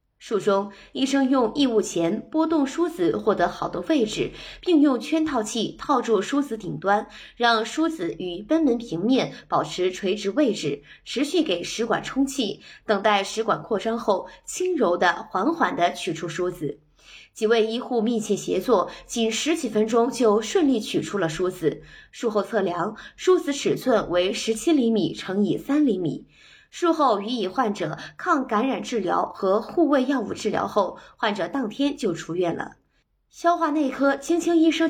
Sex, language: female, Chinese